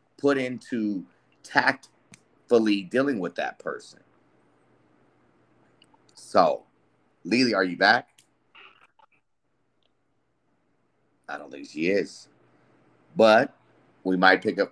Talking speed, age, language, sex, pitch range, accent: 90 wpm, 30-49, English, male, 100-130 Hz, American